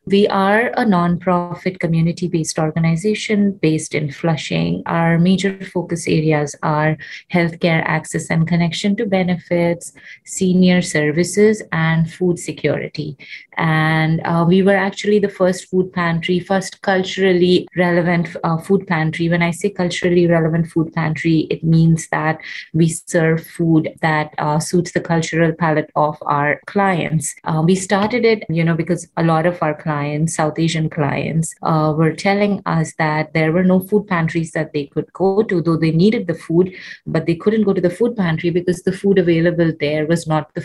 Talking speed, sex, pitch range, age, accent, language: 165 wpm, female, 155-180 Hz, 30-49, Indian, English